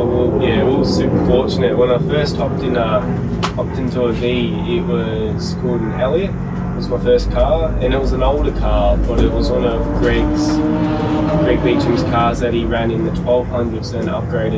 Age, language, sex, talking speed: 10-29, English, male, 195 wpm